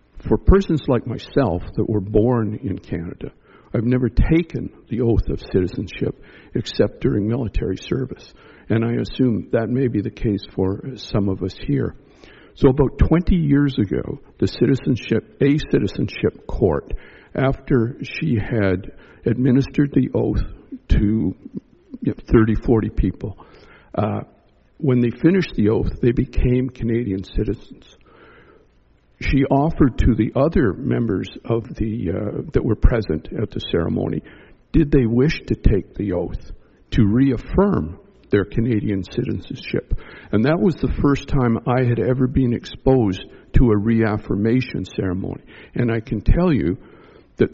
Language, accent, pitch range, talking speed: English, American, 105-135 Hz, 140 wpm